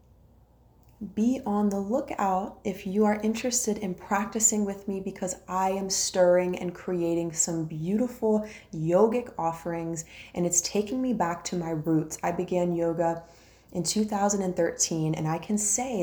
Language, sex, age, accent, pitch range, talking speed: English, female, 20-39, American, 165-205 Hz, 145 wpm